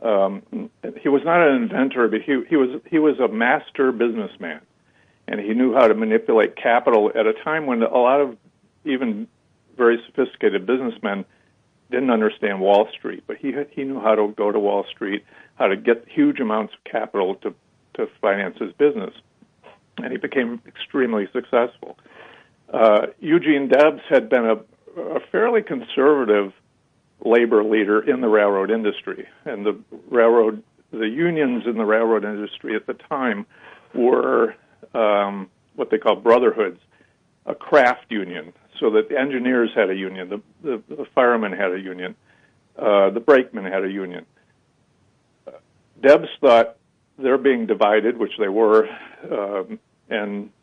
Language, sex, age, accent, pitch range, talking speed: English, male, 50-69, American, 105-155 Hz, 150 wpm